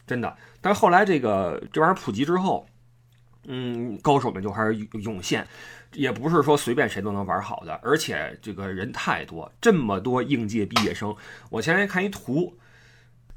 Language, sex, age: Chinese, male, 20-39